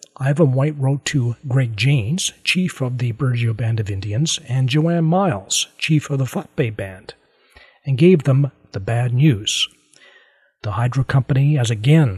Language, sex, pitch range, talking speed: English, male, 120-155 Hz, 165 wpm